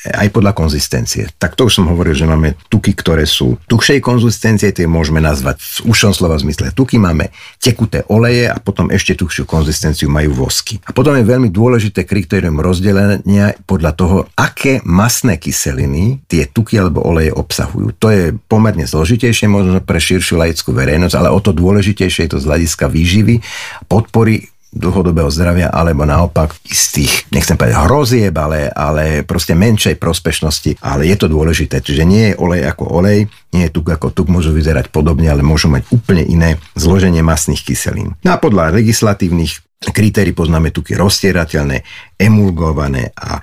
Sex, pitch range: male, 80-105 Hz